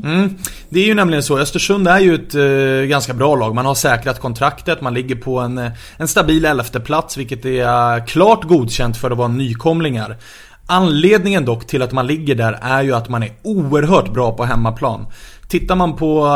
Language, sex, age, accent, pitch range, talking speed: English, male, 30-49, Swedish, 120-160 Hz, 185 wpm